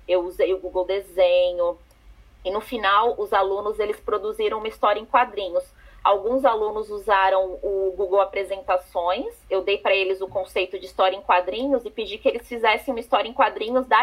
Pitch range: 185-240 Hz